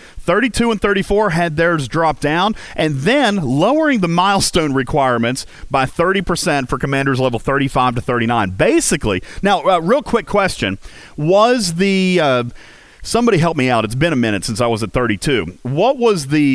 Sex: male